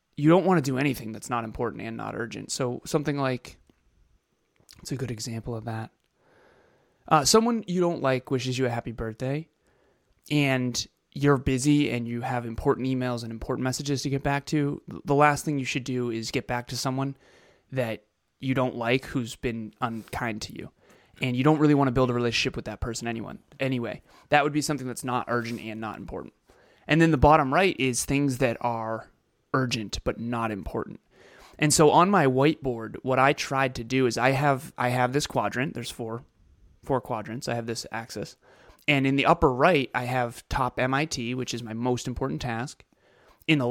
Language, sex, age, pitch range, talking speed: English, male, 20-39, 120-140 Hz, 200 wpm